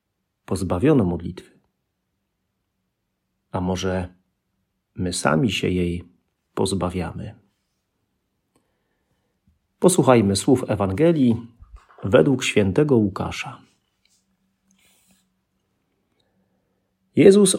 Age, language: 40-59, Polish